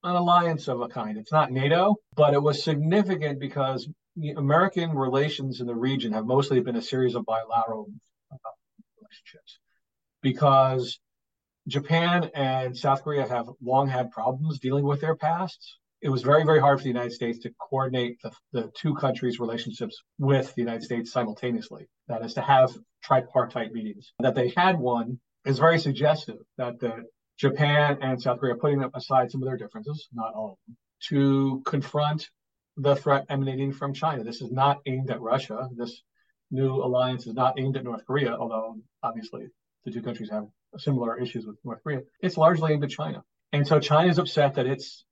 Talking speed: 180 wpm